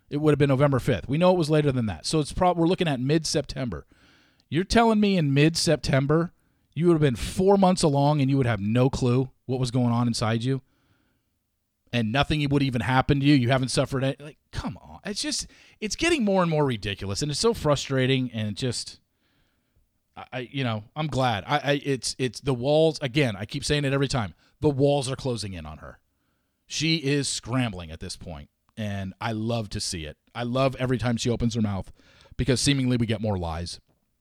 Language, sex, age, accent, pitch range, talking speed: English, male, 40-59, American, 105-145 Hz, 220 wpm